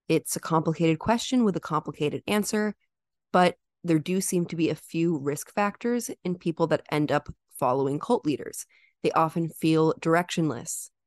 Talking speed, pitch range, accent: 165 wpm, 155-190 Hz, American